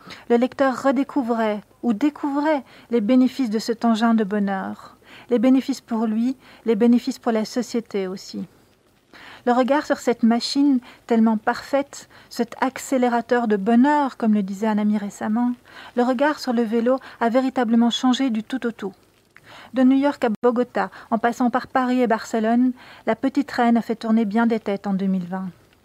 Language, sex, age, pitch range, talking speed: French, female, 40-59, 220-250 Hz, 170 wpm